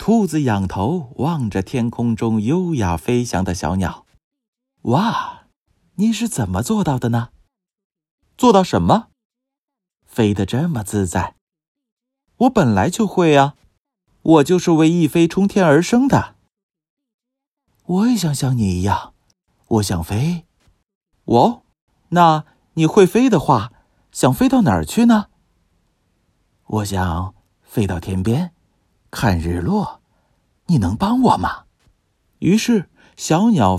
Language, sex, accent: Chinese, male, native